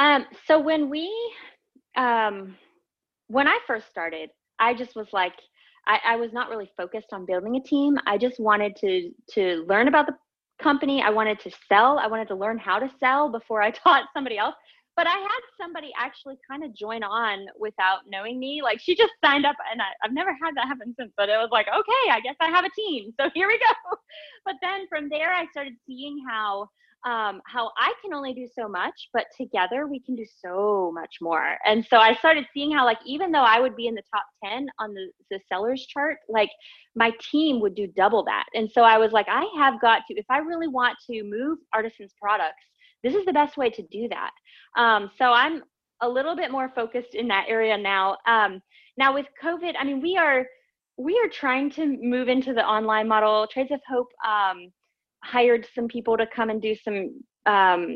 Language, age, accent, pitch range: English, 20-39, American, 210-285 Hz